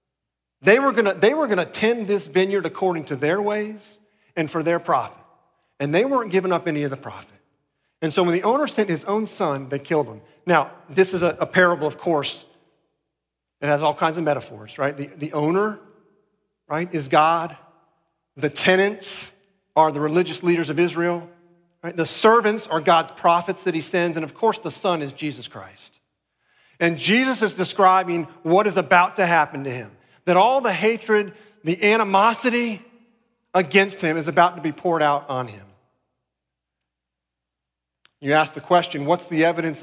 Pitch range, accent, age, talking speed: 145-190 Hz, American, 40-59, 175 wpm